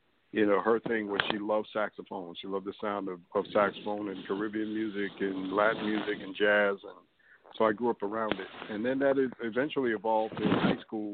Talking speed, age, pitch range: 205 wpm, 60-79, 100-110 Hz